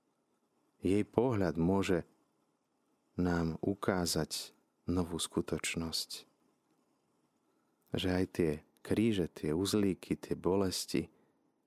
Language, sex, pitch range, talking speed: Slovak, male, 75-95 Hz, 75 wpm